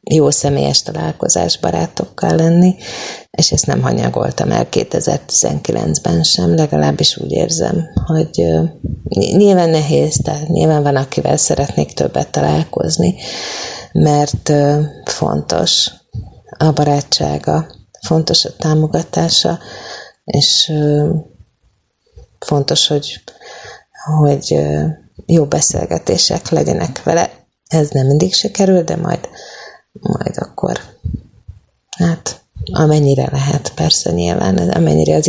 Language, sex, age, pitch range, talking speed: Hungarian, female, 30-49, 100-160 Hz, 95 wpm